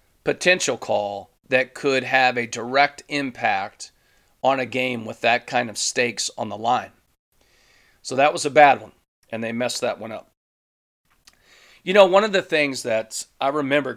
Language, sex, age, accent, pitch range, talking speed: English, male, 40-59, American, 115-135 Hz, 170 wpm